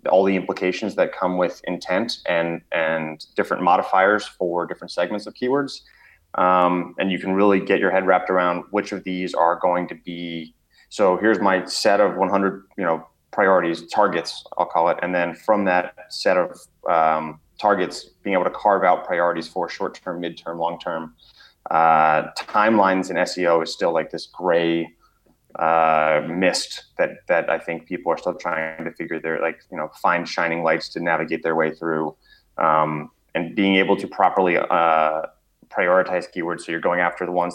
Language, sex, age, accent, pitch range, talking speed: English, male, 30-49, American, 80-95 Hz, 180 wpm